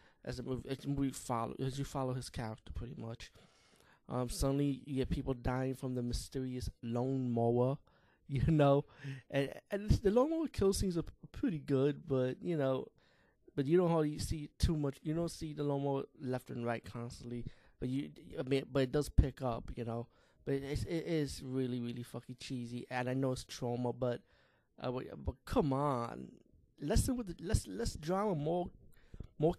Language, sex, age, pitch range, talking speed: English, male, 20-39, 120-140 Hz, 190 wpm